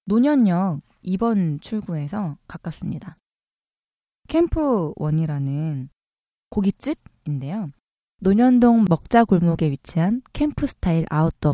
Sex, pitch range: female, 160-225 Hz